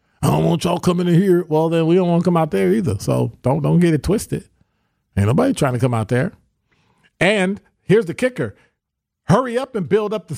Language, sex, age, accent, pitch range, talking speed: English, male, 40-59, American, 110-185 Hz, 230 wpm